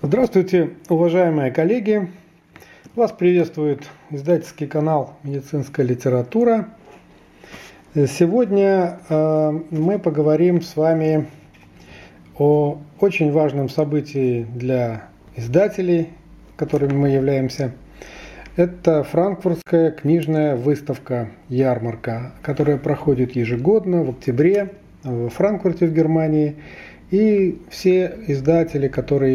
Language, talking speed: Russian, 85 wpm